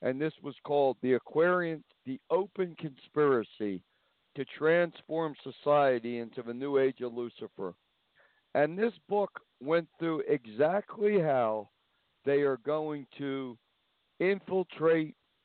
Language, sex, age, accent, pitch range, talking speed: English, male, 60-79, American, 125-160 Hz, 115 wpm